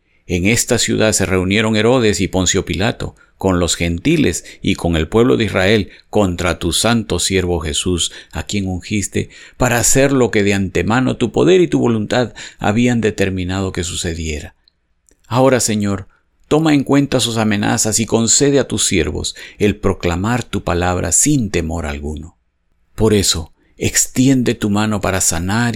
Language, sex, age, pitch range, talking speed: Spanish, male, 50-69, 80-105 Hz, 155 wpm